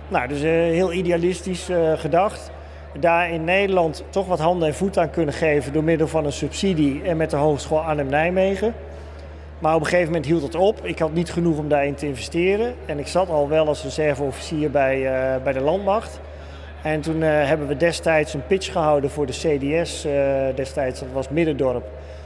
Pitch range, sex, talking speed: 140-175 Hz, male, 185 wpm